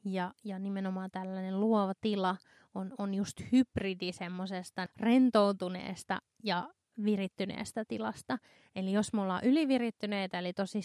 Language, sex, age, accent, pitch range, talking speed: Finnish, female, 20-39, native, 190-220 Hz, 120 wpm